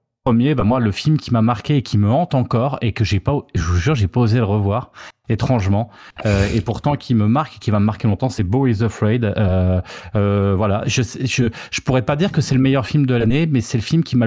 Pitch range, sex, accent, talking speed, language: 105-140 Hz, male, French, 270 wpm, French